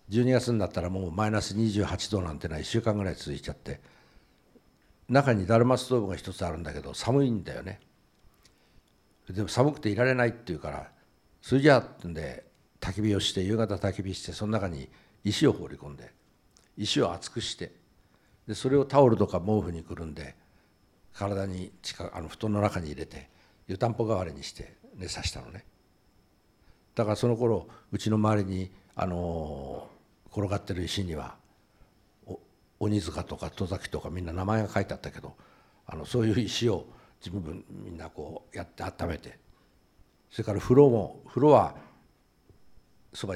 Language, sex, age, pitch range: Japanese, male, 60-79, 85-110 Hz